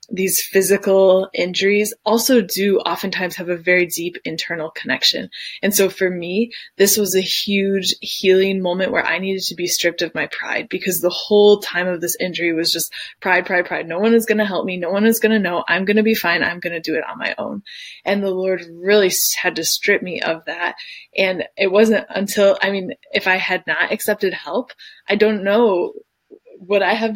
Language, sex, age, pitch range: English, female, 20-39, 180-215 Hz